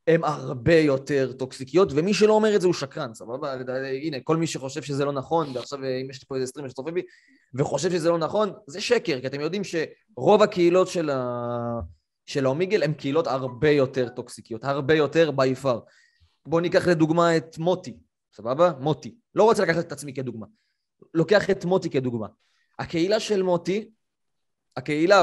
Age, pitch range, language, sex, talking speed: 20-39, 130-180 Hz, Hebrew, male, 170 wpm